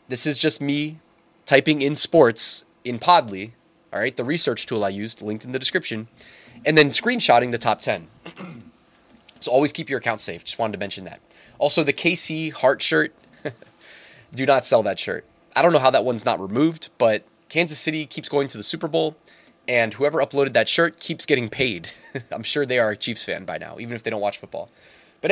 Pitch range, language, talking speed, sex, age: 115-155 Hz, English, 210 wpm, male, 20-39